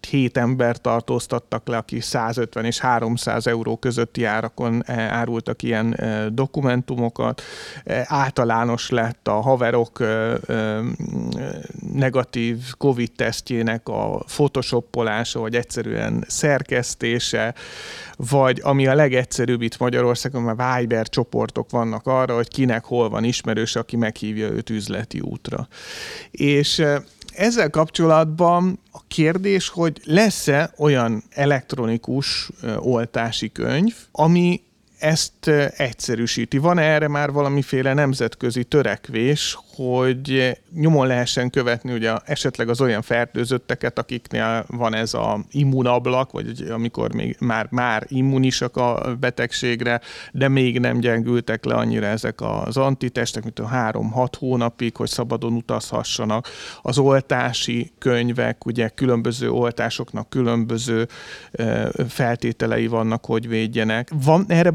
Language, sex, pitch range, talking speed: Hungarian, male, 115-140 Hz, 110 wpm